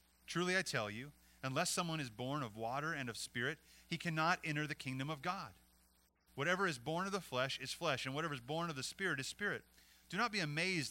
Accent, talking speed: American, 225 wpm